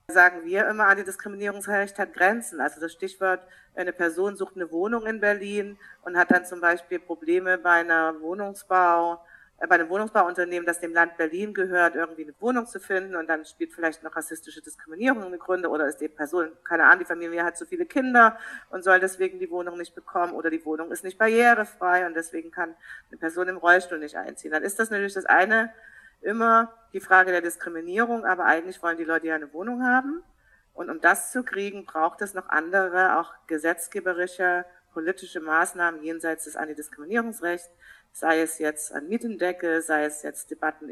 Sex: female